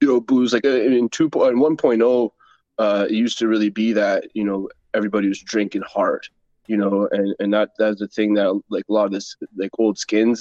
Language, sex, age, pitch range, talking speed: English, male, 20-39, 100-115 Hz, 215 wpm